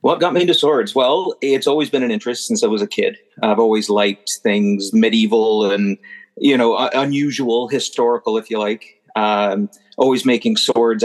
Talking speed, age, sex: 180 wpm, 40-59, male